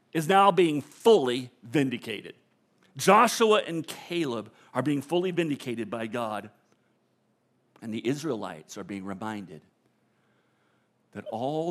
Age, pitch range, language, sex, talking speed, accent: 50-69, 120-155 Hz, English, male, 115 wpm, American